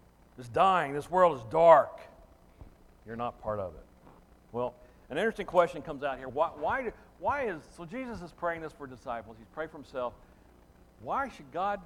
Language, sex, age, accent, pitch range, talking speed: English, male, 60-79, American, 120-200 Hz, 180 wpm